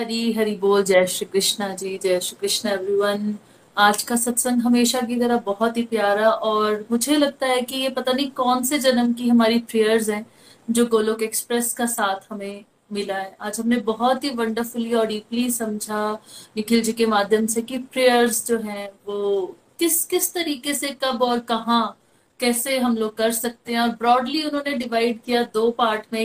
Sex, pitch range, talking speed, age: female, 215-255 Hz, 185 wpm, 30-49